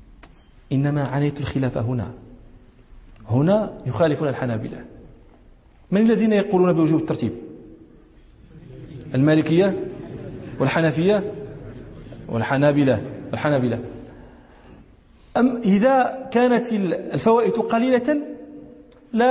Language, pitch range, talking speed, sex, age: Danish, 130-210 Hz, 70 wpm, male, 40-59